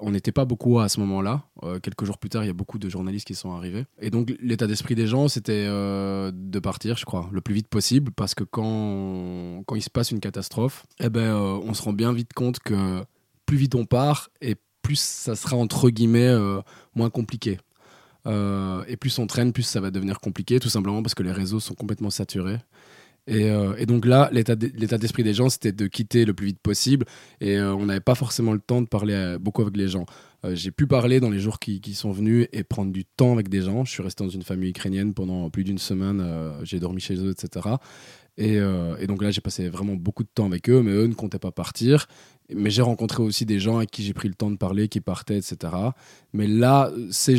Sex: male